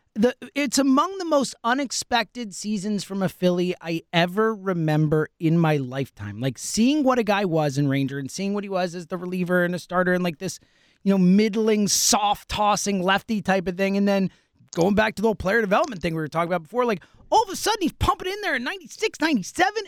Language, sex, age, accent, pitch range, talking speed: English, male, 30-49, American, 185-295 Hz, 220 wpm